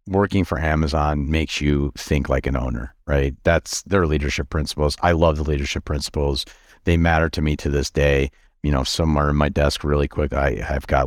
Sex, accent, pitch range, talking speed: male, American, 70-85 Hz, 200 wpm